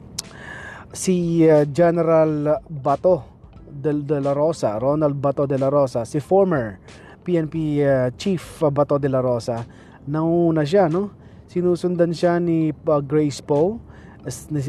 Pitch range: 135-165 Hz